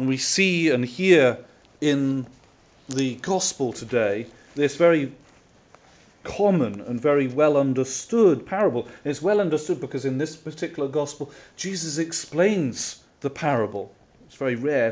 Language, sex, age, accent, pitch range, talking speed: English, male, 40-59, British, 125-155 Hz, 130 wpm